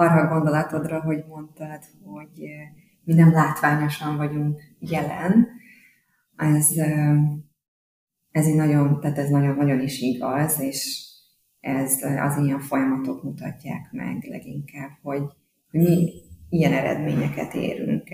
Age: 30-49